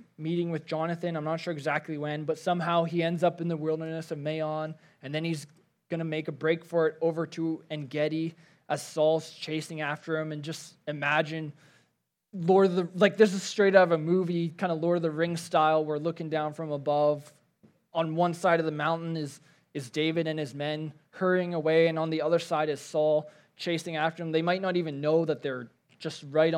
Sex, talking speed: male, 215 wpm